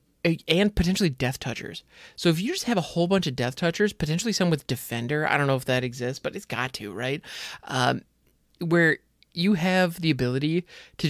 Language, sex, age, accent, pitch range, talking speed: English, male, 30-49, American, 125-170 Hz, 200 wpm